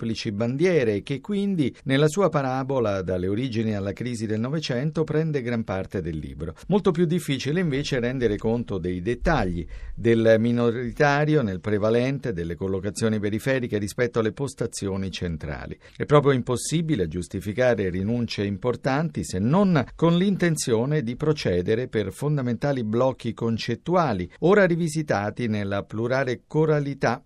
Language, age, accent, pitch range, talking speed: Italian, 50-69, native, 105-150 Hz, 125 wpm